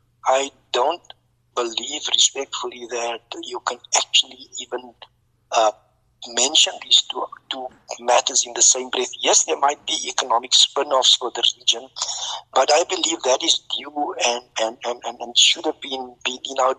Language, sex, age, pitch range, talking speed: English, male, 50-69, 125-140 Hz, 155 wpm